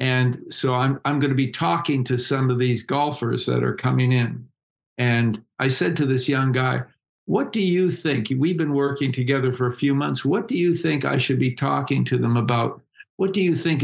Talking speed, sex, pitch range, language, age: 215 wpm, male, 125-155 Hz, English, 60-79